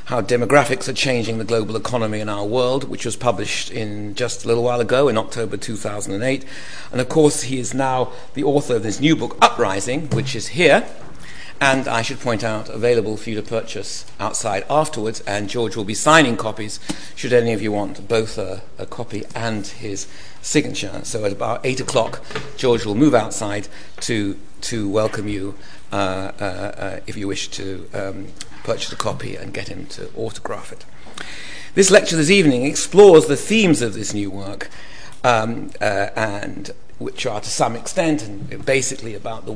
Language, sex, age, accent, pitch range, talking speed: English, male, 50-69, British, 100-125 Hz, 185 wpm